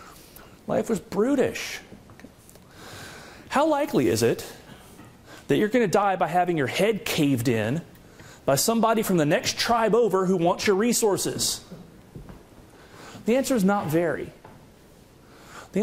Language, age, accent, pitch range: English, 30-49, American, 150-215 Hz